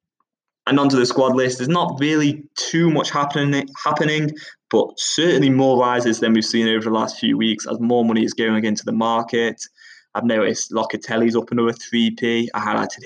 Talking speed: 185 wpm